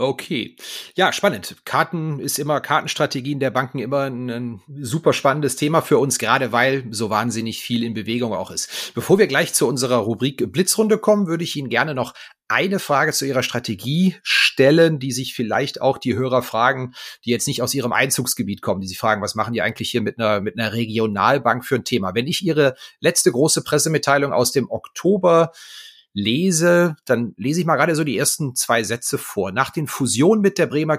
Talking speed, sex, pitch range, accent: 195 wpm, male, 120-155 Hz, German